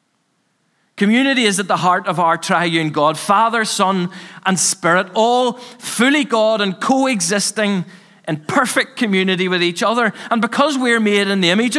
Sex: male